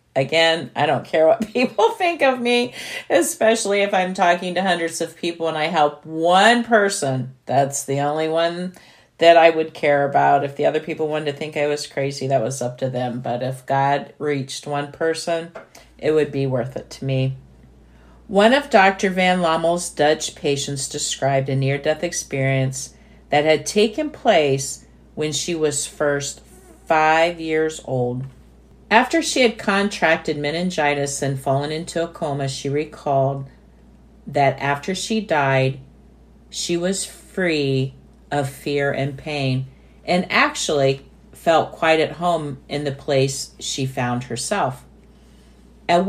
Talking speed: 150 wpm